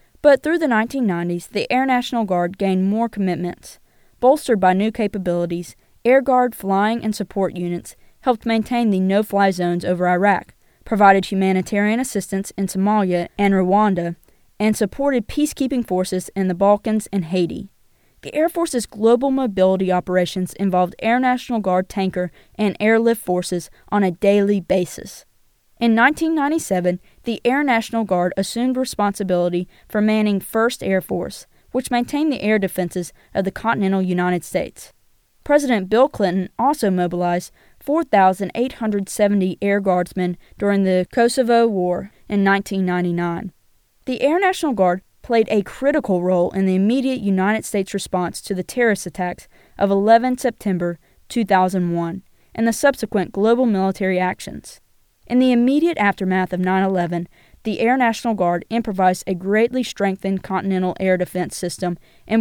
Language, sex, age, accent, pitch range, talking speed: English, female, 20-39, American, 185-230 Hz, 140 wpm